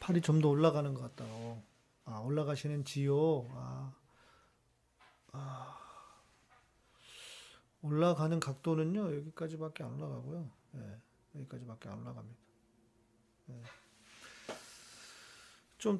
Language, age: Korean, 40-59